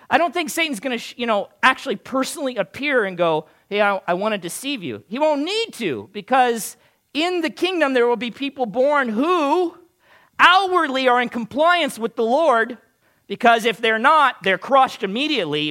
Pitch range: 185-290 Hz